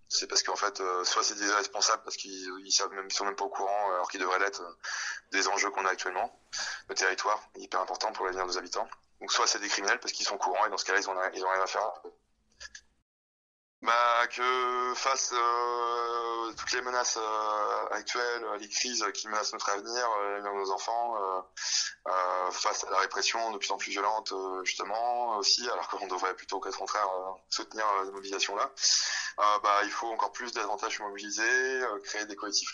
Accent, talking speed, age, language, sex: French, 205 wpm, 20-39, French, male